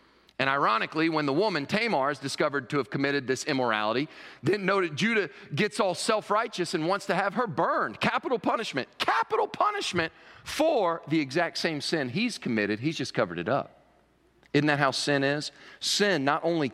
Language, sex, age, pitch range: English, male, 40-59, 130-185 Hz